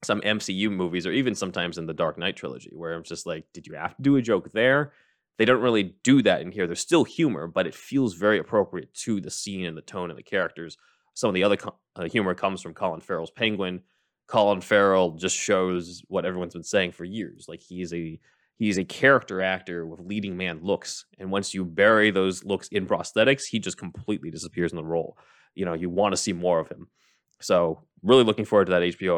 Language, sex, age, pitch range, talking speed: English, male, 20-39, 85-105 Hz, 225 wpm